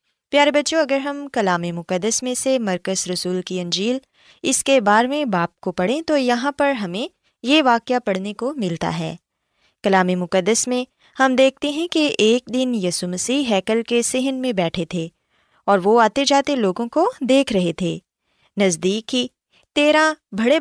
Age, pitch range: 20-39, 185-285 Hz